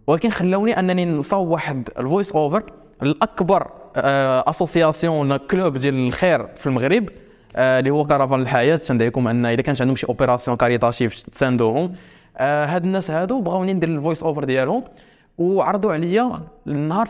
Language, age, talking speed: Arabic, 20-39, 140 wpm